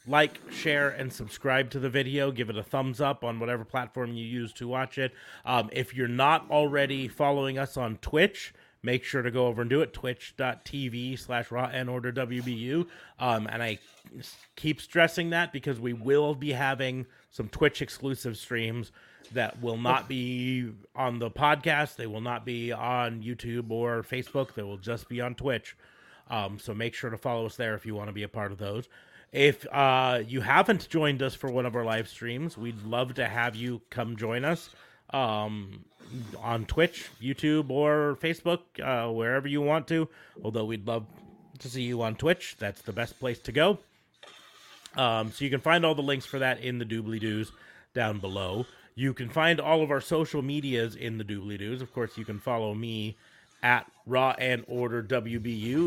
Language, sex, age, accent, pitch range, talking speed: English, male, 30-49, American, 115-140 Hz, 185 wpm